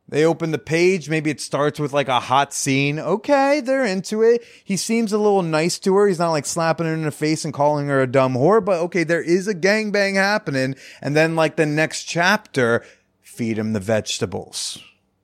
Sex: male